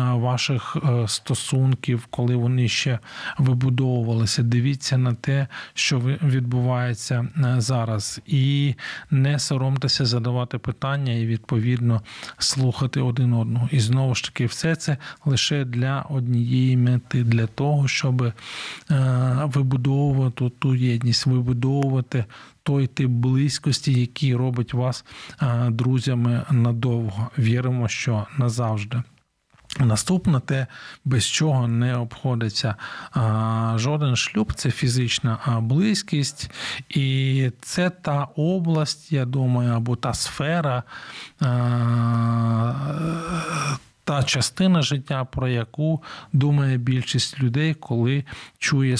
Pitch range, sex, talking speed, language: 120-140 Hz, male, 100 wpm, Ukrainian